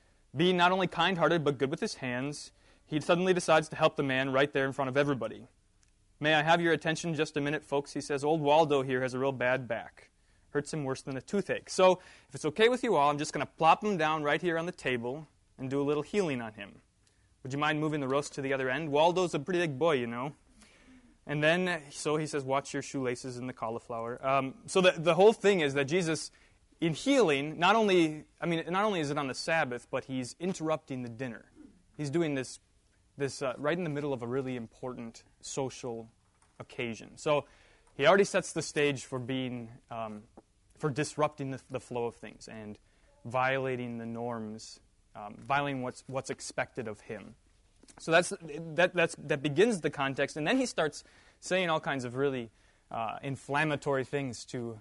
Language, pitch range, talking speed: English, 125-160 Hz, 210 wpm